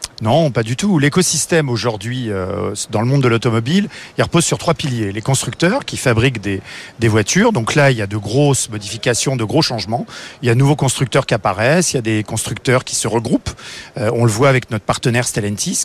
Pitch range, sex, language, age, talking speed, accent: 115-145 Hz, male, French, 40-59, 215 wpm, French